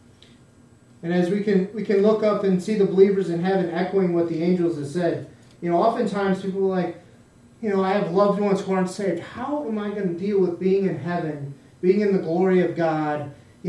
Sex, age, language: male, 30-49, English